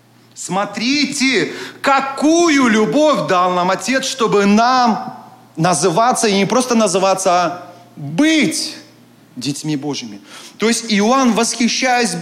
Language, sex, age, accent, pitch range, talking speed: Russian, male, 30-49, native, 185-245 Hz, 105 wpm